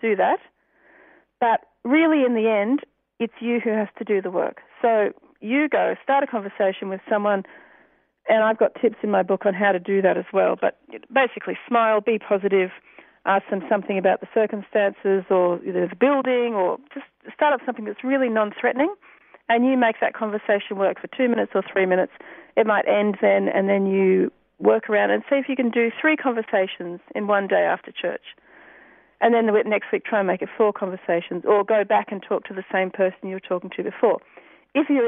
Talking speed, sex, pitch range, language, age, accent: 205 wpm, female, 195-245 Hz, English, 40-59, Australian